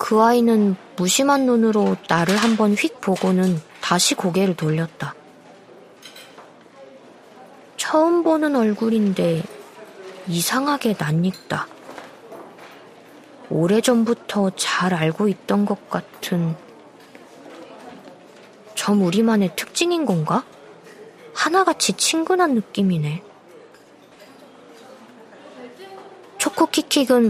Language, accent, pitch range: Korean, native, 180-240 Hz